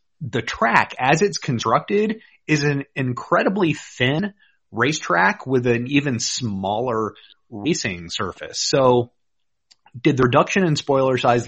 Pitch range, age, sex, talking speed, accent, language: 110-135 Hz, 30-49, male, 120 wpm, American, English